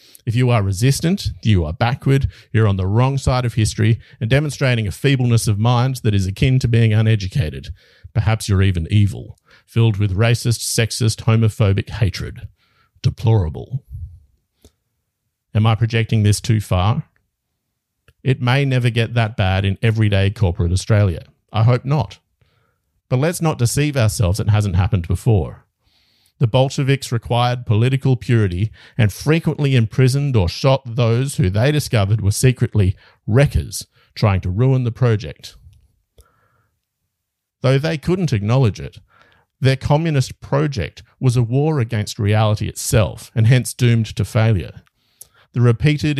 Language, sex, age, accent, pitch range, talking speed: English, male, 50-69, Australian, 105-130 Hz, 140 wpm